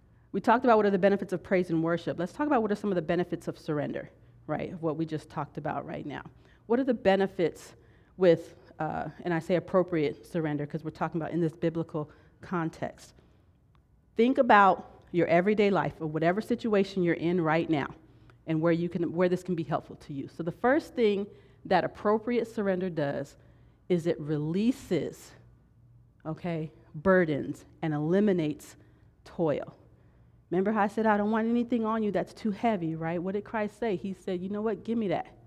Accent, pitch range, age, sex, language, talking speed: American, 155-200 Hz, 40-59, female, English, 190 wpm